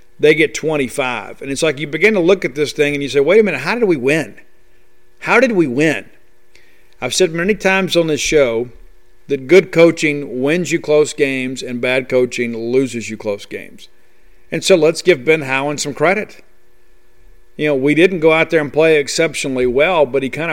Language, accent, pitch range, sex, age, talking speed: English, American, 130-160 Hz, male, 50-69, 205 wpm